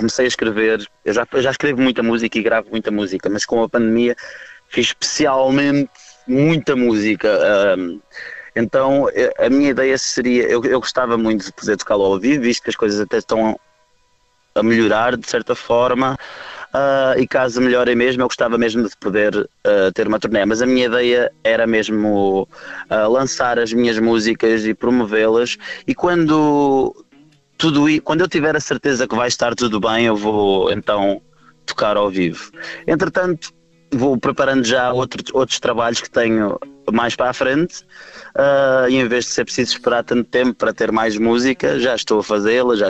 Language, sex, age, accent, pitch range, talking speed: Portuguese, male, 20-39, Brazilian, 110-135 Hz, 170 wpm